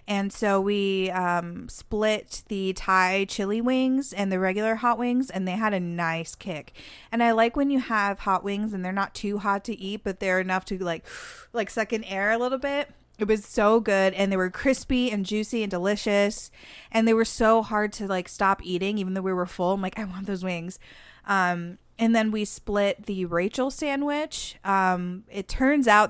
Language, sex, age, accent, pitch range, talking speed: English, female, 20-39, American, 185-220 Hz, 210 wpm